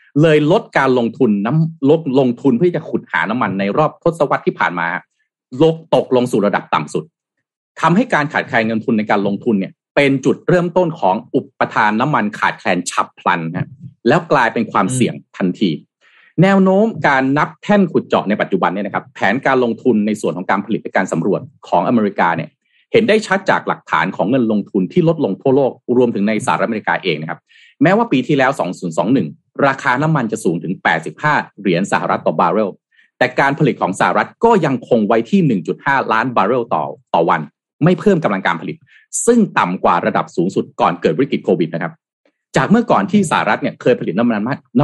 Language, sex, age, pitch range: Thai, male, 30-49, 115-185 Hz